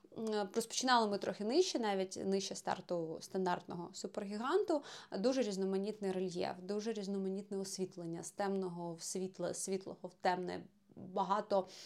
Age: 20-39